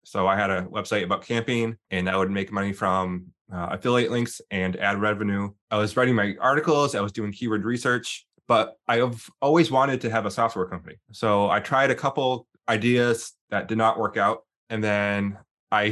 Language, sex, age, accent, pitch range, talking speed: English, male, 20-39, American, 105-130 Hz, 195 wpm